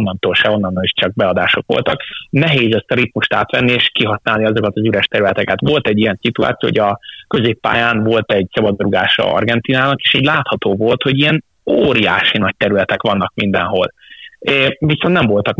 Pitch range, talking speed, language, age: 105-125 Hz, 170 wpm, Hungarian, 30-49